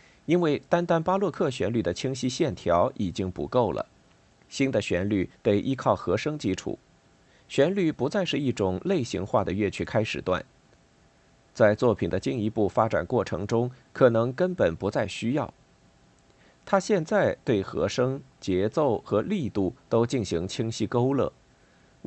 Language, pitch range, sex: Chinese, 100-140 Hz, male